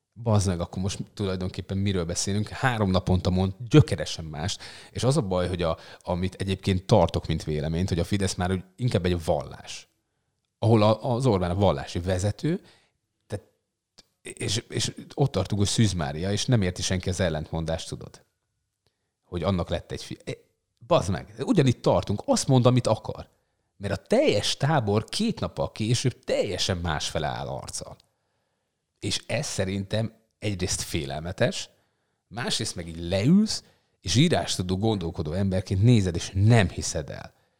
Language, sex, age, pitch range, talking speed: Hungarian, male, 30-49, 90-115 Hz, 150 wpm